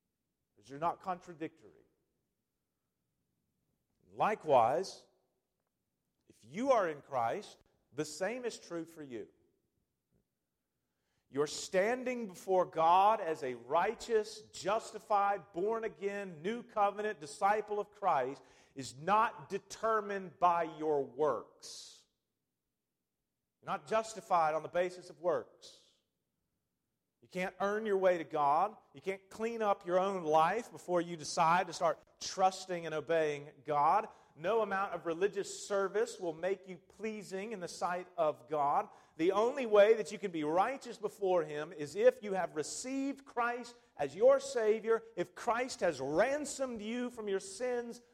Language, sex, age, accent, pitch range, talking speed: English, male, 40-59, American, 170-225 Hz, 135 wpm